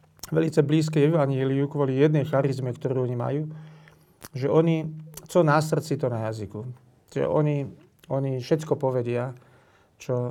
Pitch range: 130-155 Hz